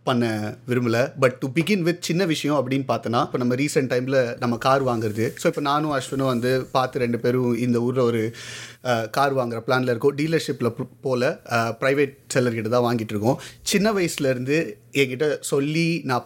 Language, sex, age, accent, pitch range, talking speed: Tamil, male, 30-49, native, 125-150 Hz, 160 wpm